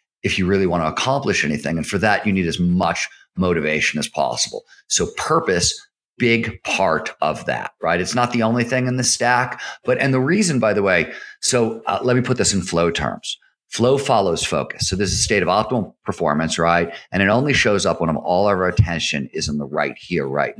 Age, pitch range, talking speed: 50-69, 90-125 Hz, 220 wpm